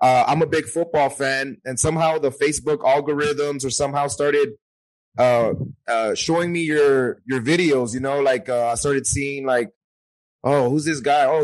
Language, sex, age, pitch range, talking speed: English, male, 30-49, 125-150 Hz, 180 wpm